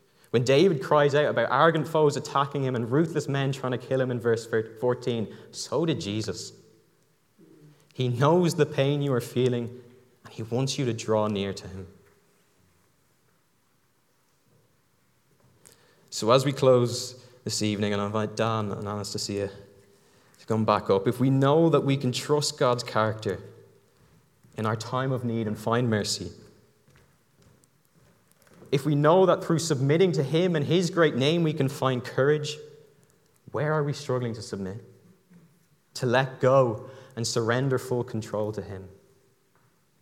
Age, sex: 20-39, male